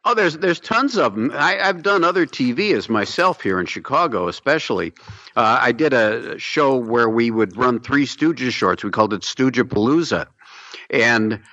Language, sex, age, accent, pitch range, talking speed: English, male, 50-69, American, 105-125 Hz, 175 wpm